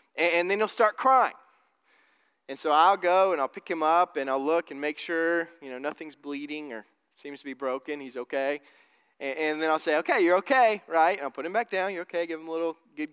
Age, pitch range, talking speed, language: 20-39, 155-220 Hz, 240 wpm, English